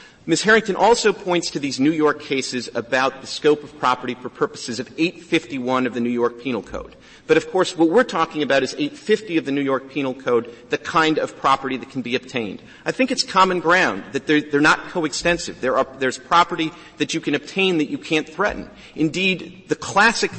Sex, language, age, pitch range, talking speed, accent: male, English, 40-59, 130-175 Hz, 205 wpm, American